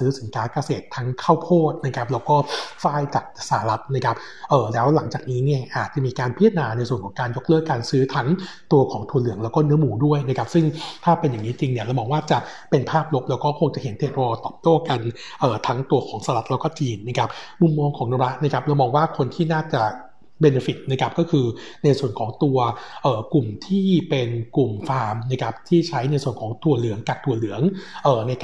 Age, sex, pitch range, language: 60-79, male, 125-155 Hz, Thai